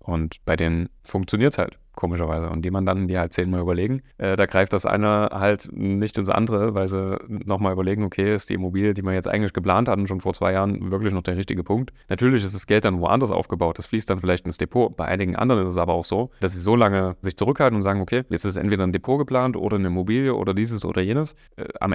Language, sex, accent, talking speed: German, male, German, 250 wpm